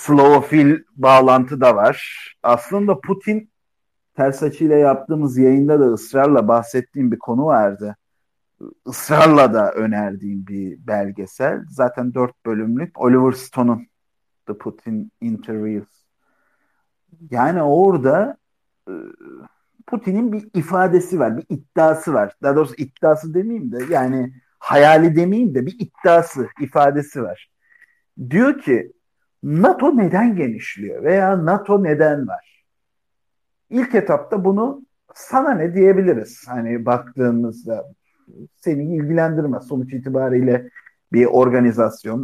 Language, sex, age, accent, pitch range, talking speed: Turkish, male, 50-69, native, 120-180 Hz, 105 wpm